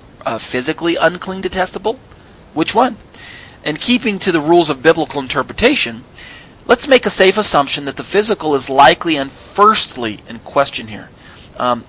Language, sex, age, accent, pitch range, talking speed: English, male, 40-59, American, 120-160 Hz, 150 wpm